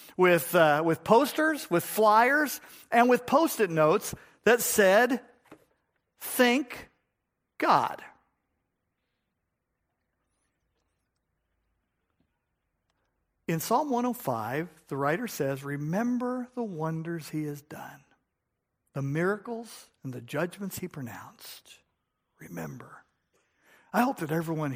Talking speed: 90 wpm